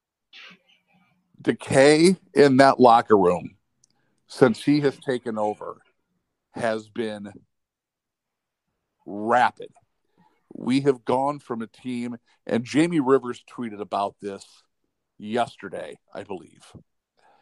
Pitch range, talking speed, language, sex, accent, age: 115-145 Hz, 95 wpm, English, male, American, 50-69